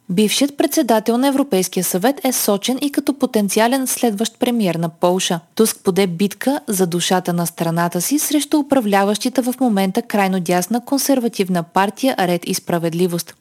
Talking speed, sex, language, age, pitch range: 150 wpm, female, Bulgarian, 20-39, 180-255 Hz